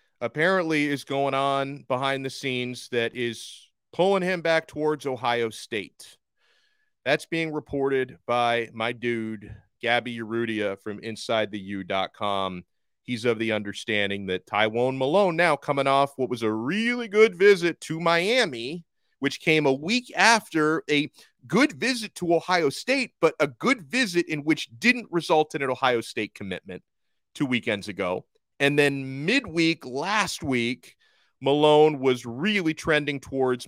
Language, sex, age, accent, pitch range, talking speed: English, male, 30-49, American, 115-155 Hz, 145 wpm